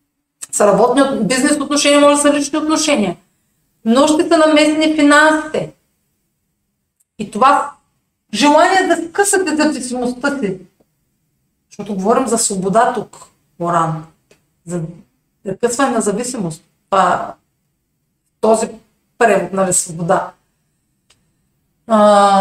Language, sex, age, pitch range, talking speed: Bulgarian, female, 40-59, 190-290 Hz, 95 wpm